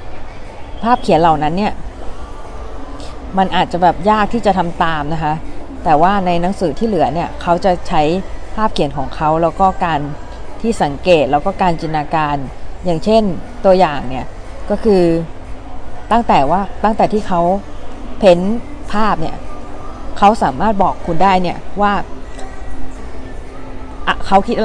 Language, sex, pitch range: Thai, female, 155-205 Hz